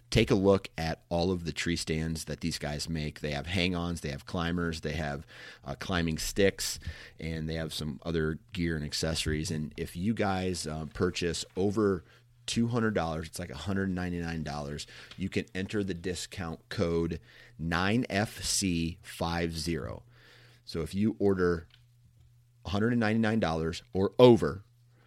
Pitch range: 80-100 Hz